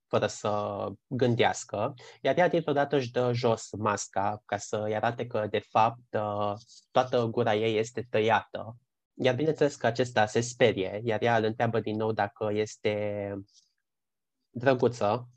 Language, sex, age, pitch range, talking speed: Romanian, male, 20-39, 105-125 Hz, 145 wpm